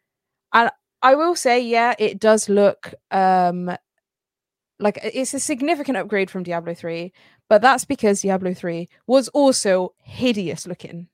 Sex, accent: female, British